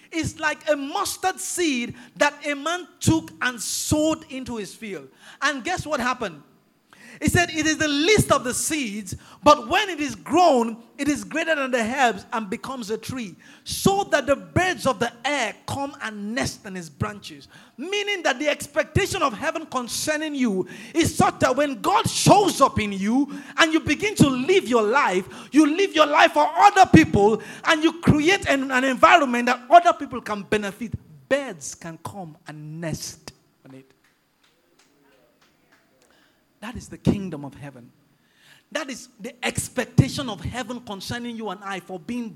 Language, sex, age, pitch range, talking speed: English, male, 50-69, 205-320 Hz, 175 wpm